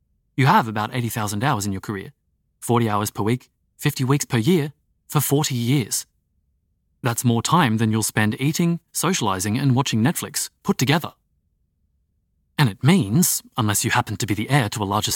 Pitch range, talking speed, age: 100-140 Hz, 180 wpm, 30-49